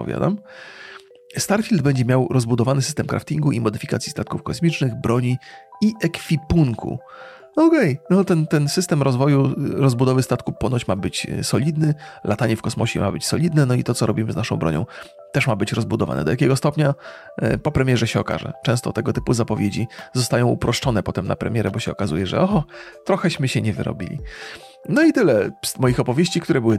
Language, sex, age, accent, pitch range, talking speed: Polish, male, 30-49, native, 115-165 Hz, 170 wpm